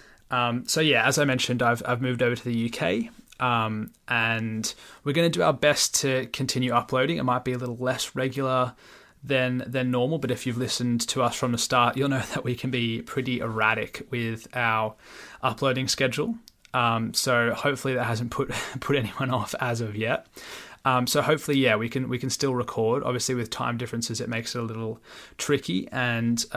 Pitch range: 115-130 Hz